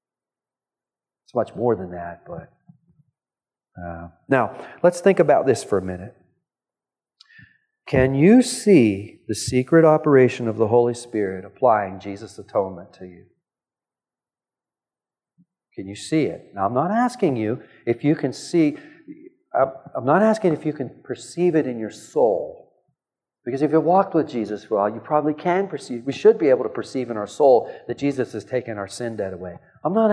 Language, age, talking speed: English, 40-59, 170 wpm